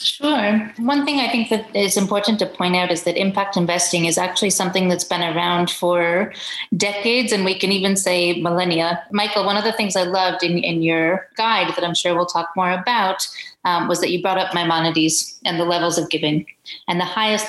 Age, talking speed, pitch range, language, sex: 30-49, 215 wpm, 170-210 Hz, English, female